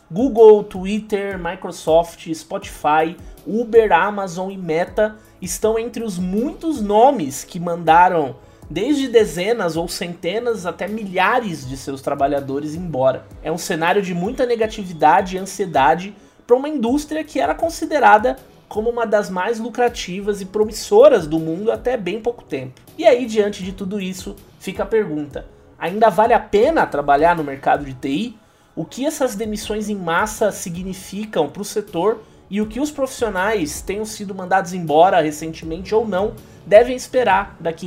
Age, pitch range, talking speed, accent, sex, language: 20-39, 175-230 Hz, 150 wpm, Brazilian, male, Portuguese